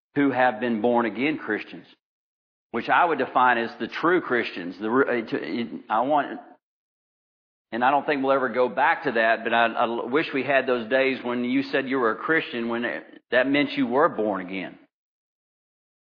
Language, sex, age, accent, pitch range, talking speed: English, male, 50-69, American, 120-145 Hz, 185 wpm